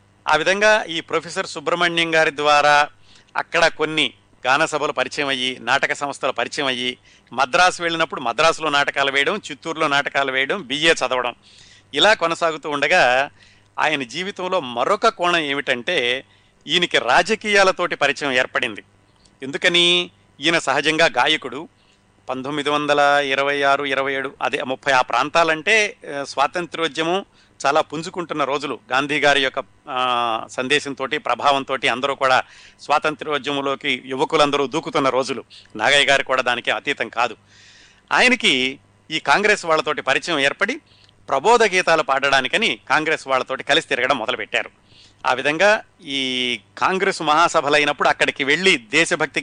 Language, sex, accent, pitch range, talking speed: Telugu, male, native, 130-160 Hz, 110 wpm